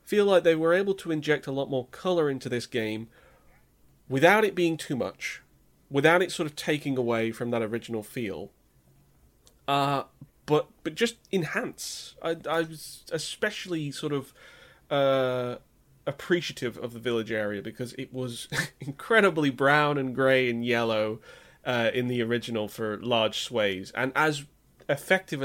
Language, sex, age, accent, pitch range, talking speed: English, male, 20-39, British, 120-150 Hz, 155 wpm